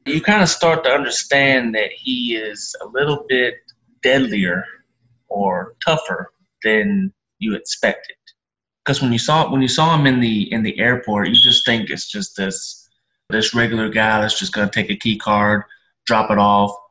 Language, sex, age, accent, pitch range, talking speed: English, male, 20-39, American, 105-130 Hz, 180 wpm